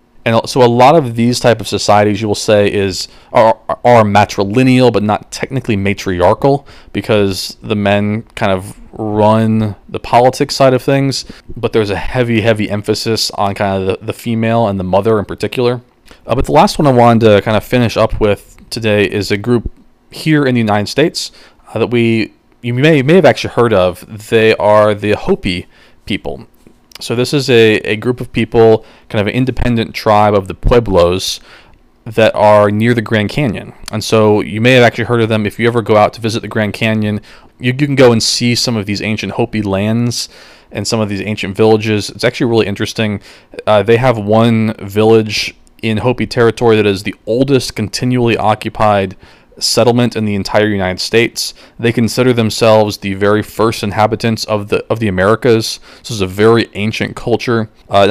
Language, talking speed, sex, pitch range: English, 195 wpm, male, 105-120 Hz